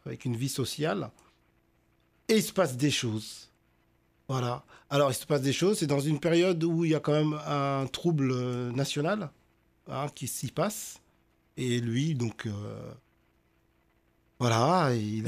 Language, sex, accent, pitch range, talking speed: French, male, French, 125-155 Hz, 155 wpm